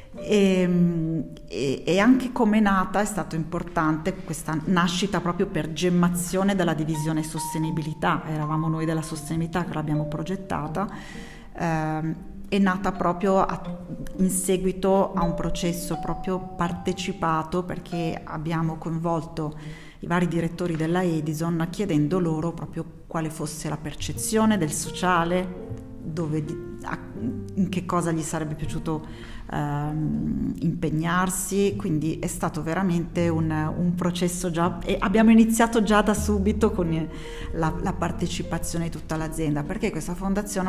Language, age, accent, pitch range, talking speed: Italian, 40-59, native, 155-180 Hz, 130 wpm